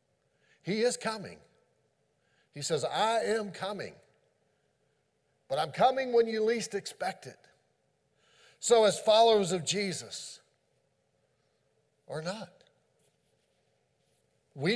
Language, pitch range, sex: English, 155-220 Hz, male